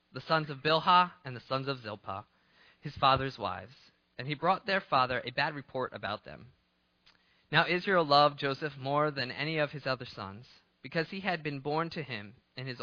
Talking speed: 195 wpm